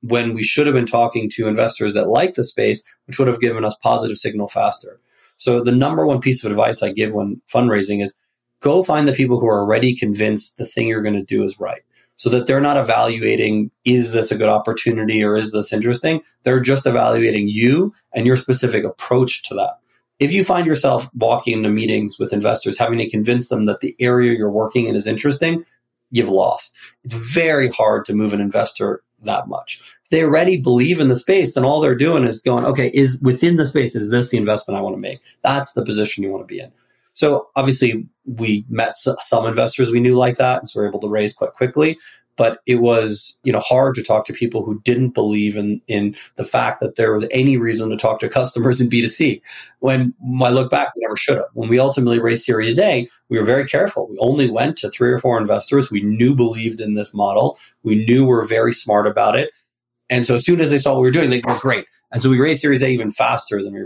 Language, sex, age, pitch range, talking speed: English, male, 30-49, 110-130 Hz, 235 wpm